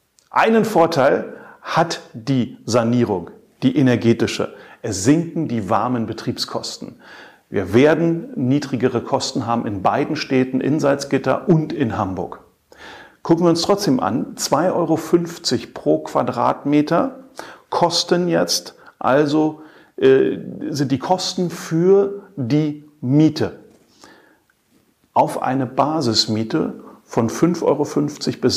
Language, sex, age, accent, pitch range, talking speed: German, male, 40-59, German, 120-165 Hz, 105 wpm